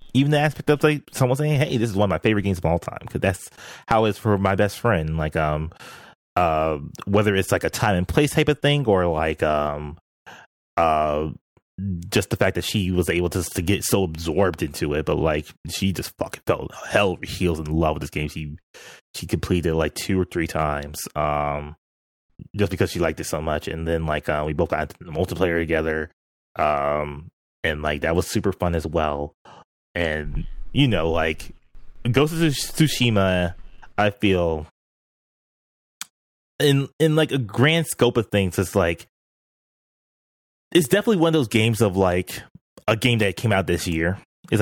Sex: male